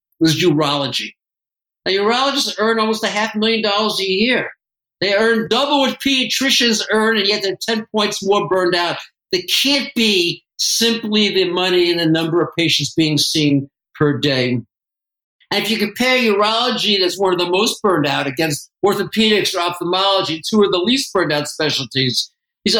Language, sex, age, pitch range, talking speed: English, male, 50-69, 180-225 Hz, 170 wpm